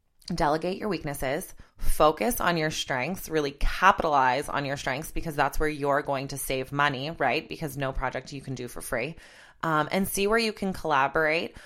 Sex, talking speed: female, 185 wpm